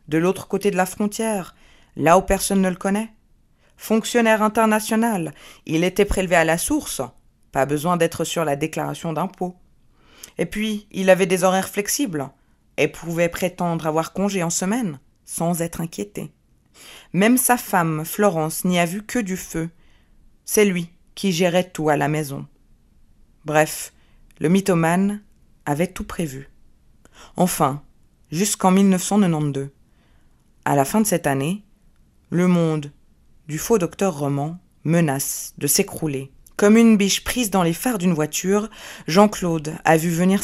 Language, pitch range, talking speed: French, 160-205 Hz, 145 wpm